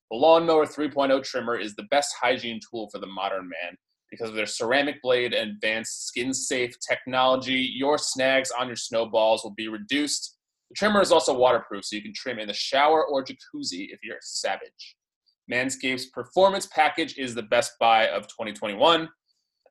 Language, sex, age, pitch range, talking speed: English, male, 20-39, 115-155 Hz, 175 wpm